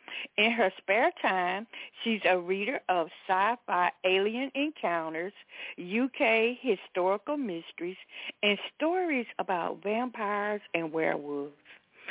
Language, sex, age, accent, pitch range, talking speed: English, female, 60-79, American, 175-245 Hz, 100 wpm